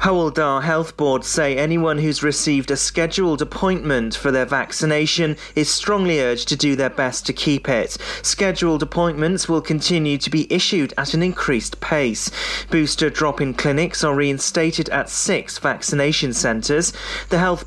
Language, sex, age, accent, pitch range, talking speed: English, male, 30-49, British, 135-165 Hz, 155 wpm